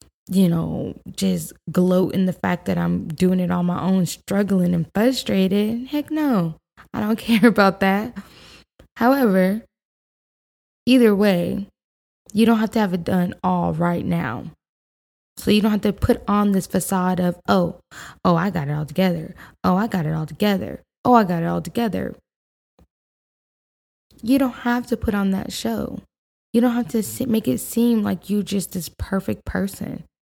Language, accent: English, American